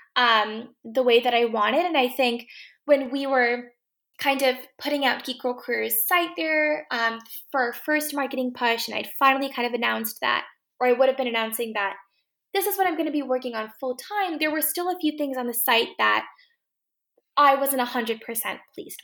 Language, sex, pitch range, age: English, female, 235-295 Hz, 10-29